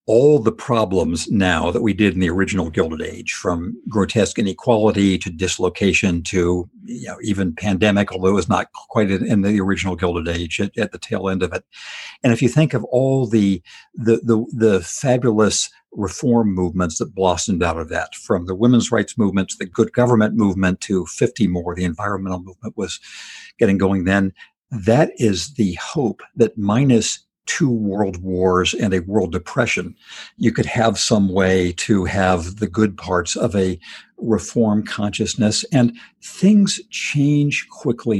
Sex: male